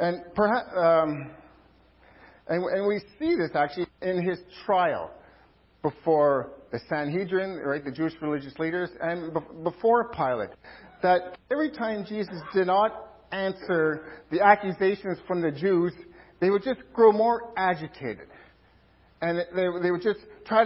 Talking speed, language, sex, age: 130 wpm, English, male, 50-69